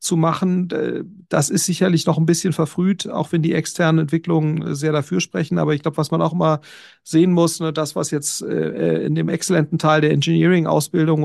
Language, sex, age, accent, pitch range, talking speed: German, male, 40-59, German, 155-180 Hz, 185 wpm